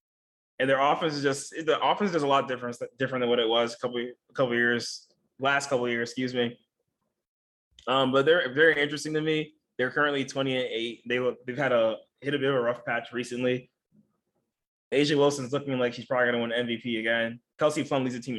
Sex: male